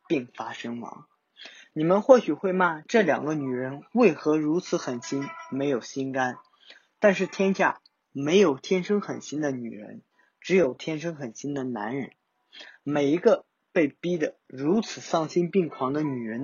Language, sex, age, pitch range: Chinese, male, 20-39, 135-190 Hz